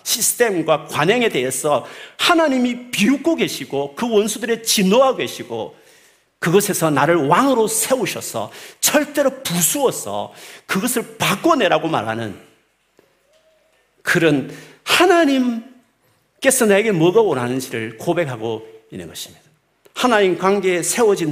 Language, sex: Korean, male